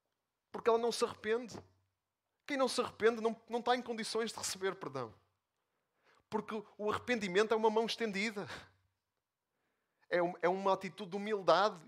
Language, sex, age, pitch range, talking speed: Portuguese, male, 30-49, 135-195 Hz, 150 wpm